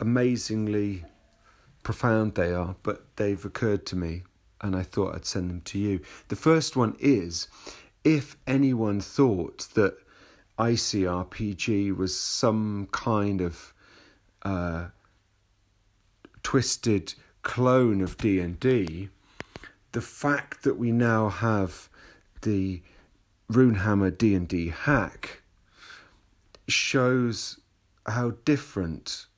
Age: 40-59